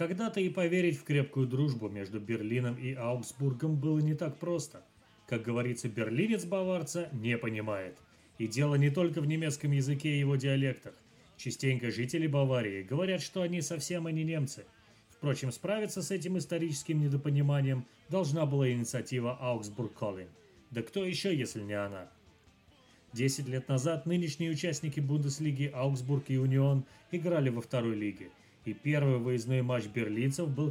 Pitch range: 115-155 Hz